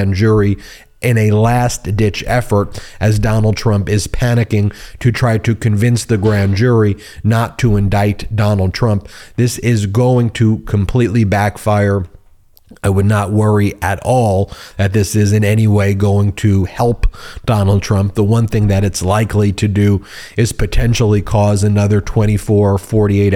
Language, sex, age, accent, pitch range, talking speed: English, male, 30-49, American, 100-110 Hz, 155 wpm